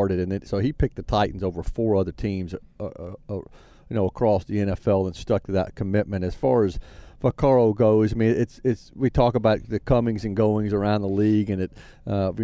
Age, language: 40-59, English